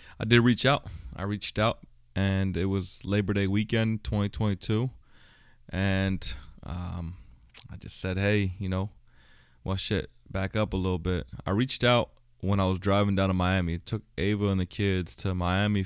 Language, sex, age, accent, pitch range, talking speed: English, male, 20-39, American, 90-105 Hz, 180 wpm